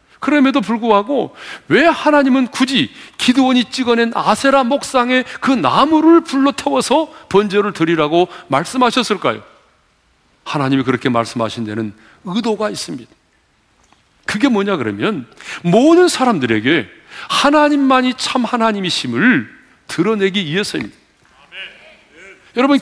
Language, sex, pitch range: Korean, male, 180-260 Hz